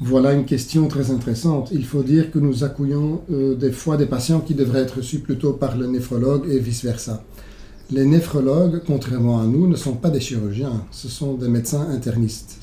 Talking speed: 195 wpm